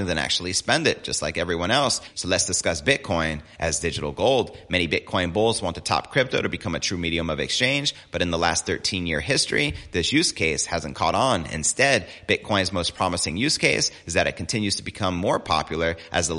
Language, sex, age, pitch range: English, male, 30-49, 85-110 Hz